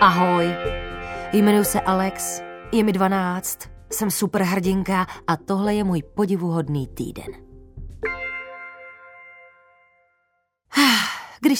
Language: Czech